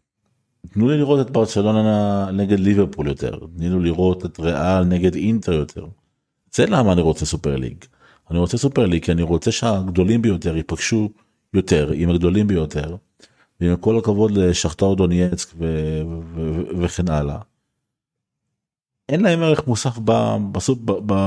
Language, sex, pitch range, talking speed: Hebrew, male, 85-110 Hz, 145 wpm